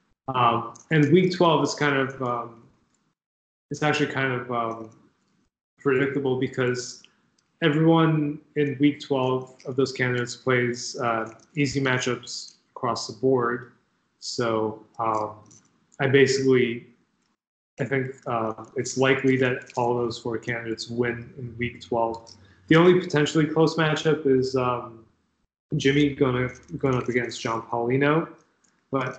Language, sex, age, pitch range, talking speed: English, male, 20-39, 120-140 Hz, 125 wpm